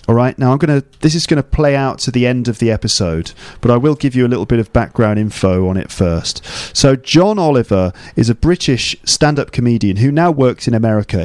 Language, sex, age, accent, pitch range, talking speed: English, male, 40-59, British, 105-140 Hz, 230 wpm